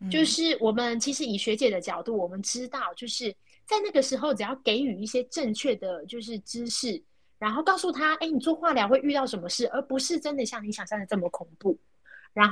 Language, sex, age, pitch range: Chinese, female, 20-39, 195-265 Hz